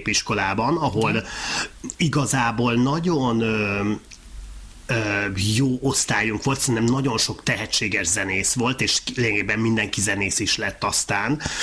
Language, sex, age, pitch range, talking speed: Hungarian, male, 30-49, 105-135 Hz, 115 wpm